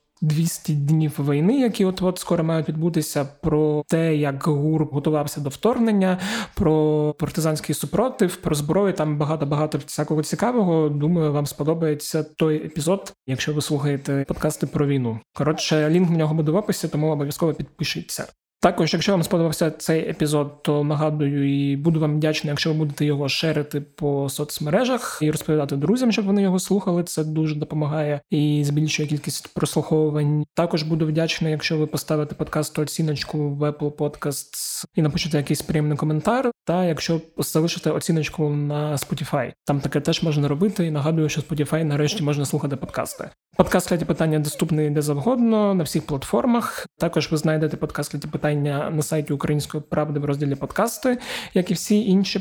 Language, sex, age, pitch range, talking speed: Ukrainian, male, 20-39, 150-170 Hz, 155 wpm